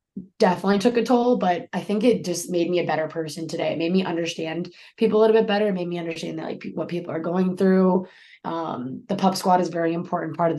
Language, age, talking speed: English, 20-39, 255 wpm